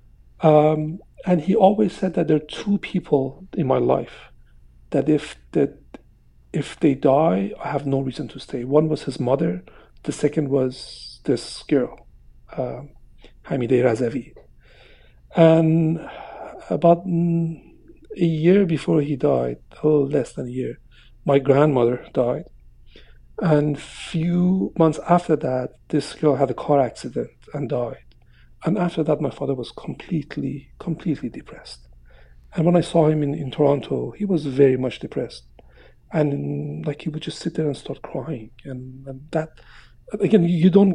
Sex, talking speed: male, 155 wpm